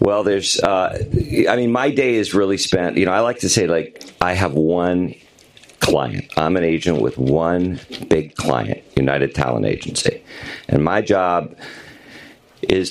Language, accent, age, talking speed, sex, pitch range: English, American, 50-69, 165 wpm, male, 80-95 Hz